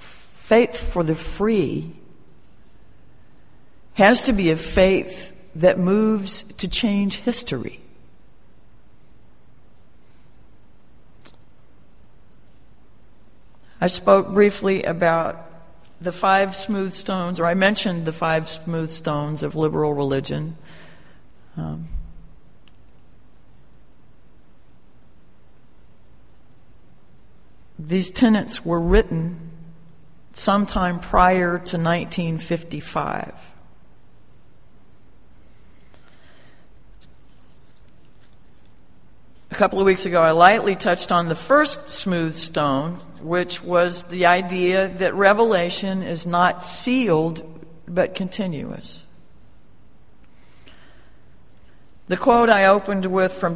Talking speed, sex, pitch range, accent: 80 wpm, female, 165-195 Hz, American